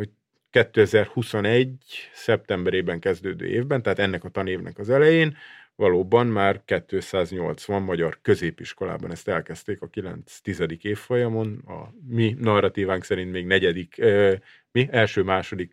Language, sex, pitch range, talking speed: Hungarian, male, 100-120 Hz, 110 wpm